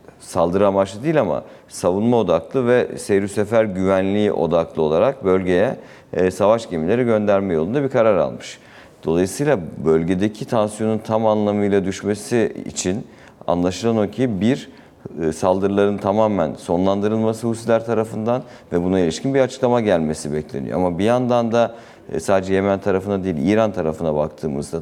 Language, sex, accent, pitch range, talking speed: Turkish, male, native, 85-110 Hz, 130 wpm